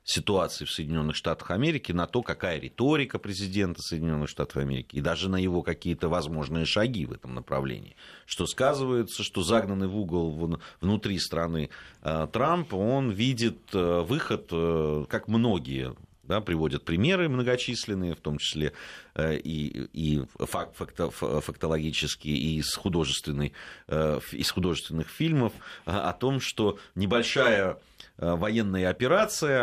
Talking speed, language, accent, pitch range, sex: 120 wpm, Russian, native, 80-115 Hz, male